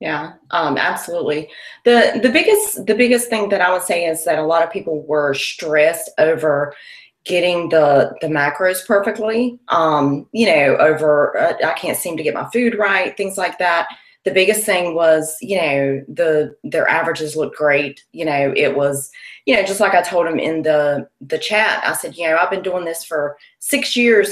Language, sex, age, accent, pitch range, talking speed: English, female, 30-49, American, 155-205 Hz, 200 wpm